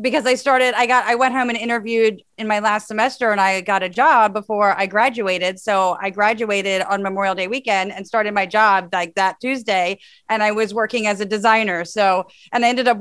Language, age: English, 30-49